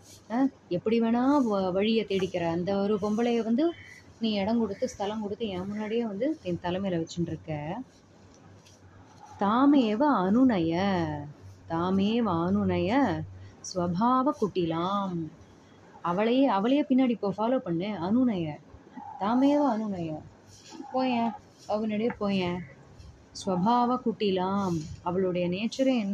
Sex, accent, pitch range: female, native, 180-240 Hz